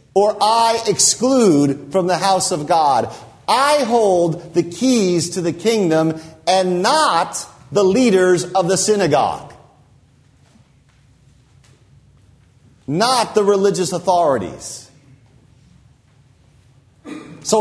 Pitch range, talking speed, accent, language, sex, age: 130-195 Hz, 90 wpm, American, English, male, 40-59